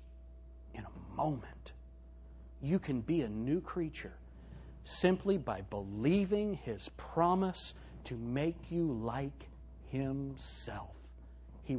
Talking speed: 90 wpm